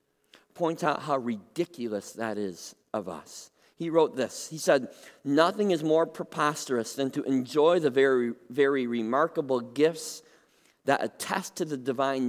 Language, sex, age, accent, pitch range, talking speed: English, male, 40-59, American, 130-180 Hz, 145 wpm